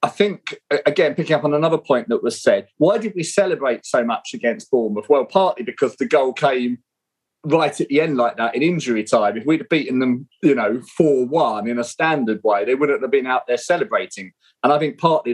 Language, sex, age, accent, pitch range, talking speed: English, male, 30-49, British, 115-160 Hz, 220 wpm